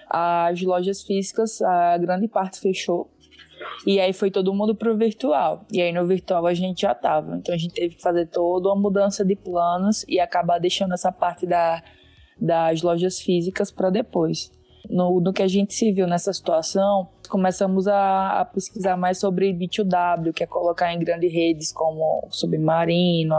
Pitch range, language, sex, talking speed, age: 170-195 Hz, Portuguese, female, 180 wpm, 20-39